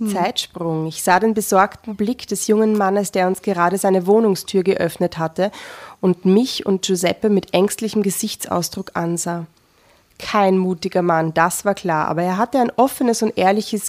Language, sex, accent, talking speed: German, female, German, 160 wpm